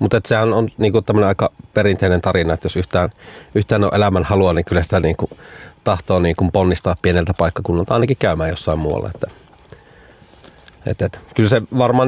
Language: Finnish